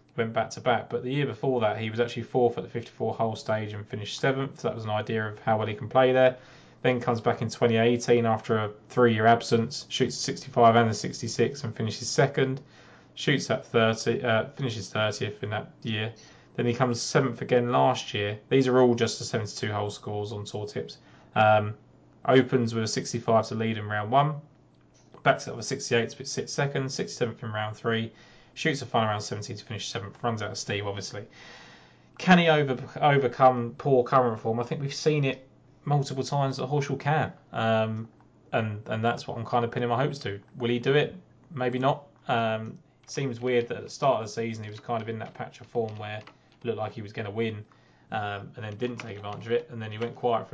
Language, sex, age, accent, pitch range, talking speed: English, male, 20-39, British, 110-130 Hz, 225 wpm